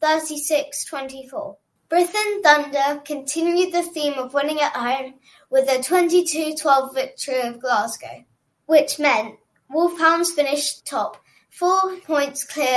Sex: female